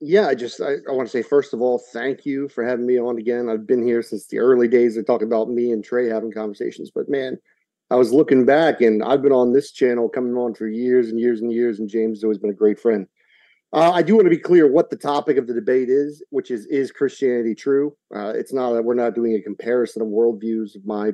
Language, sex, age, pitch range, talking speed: English, male, 40-59, 115-170 Hz, 265 wpm